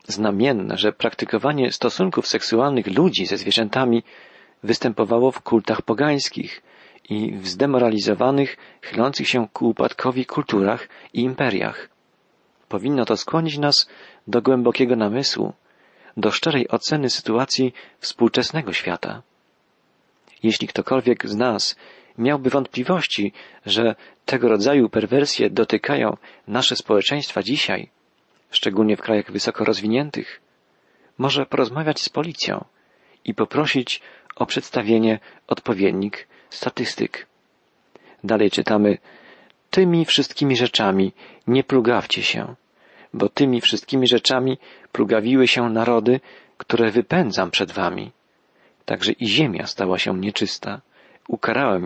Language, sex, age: Polish, male, 40-59